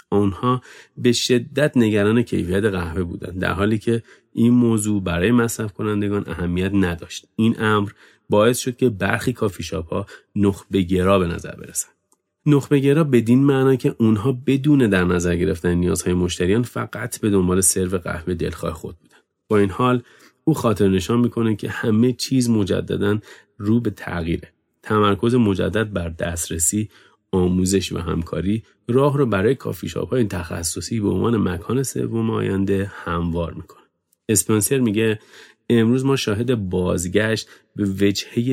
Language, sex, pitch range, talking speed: Persian, male, 95-115 Hz, 140 wpm